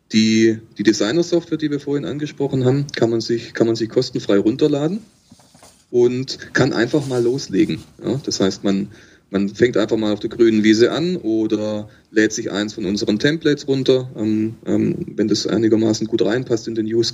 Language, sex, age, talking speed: German, male, 30-49, 160 wpm